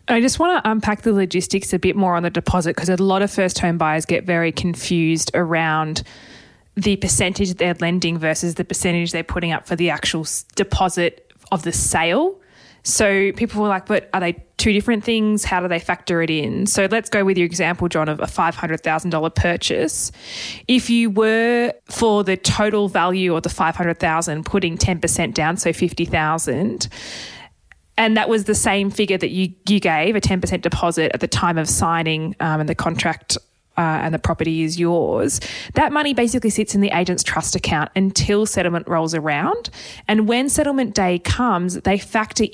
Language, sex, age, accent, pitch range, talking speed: English, female, 20-39, Australian, 170-210 Hz, 185 wpm